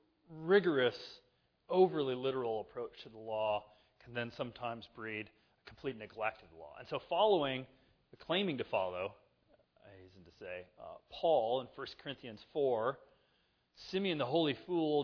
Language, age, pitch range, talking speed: English, 40-59, 100-135 Hz, 155 wpm